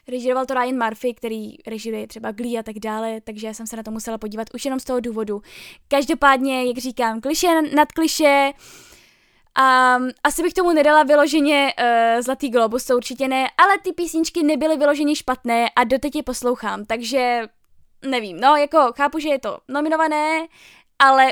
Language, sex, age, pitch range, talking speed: Czech, female, 10-29, 245-310 Hz, 175 wpm